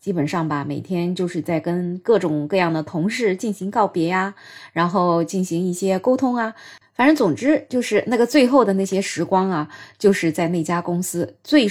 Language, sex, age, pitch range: Chinese, female, 20-39, 170-235 Hz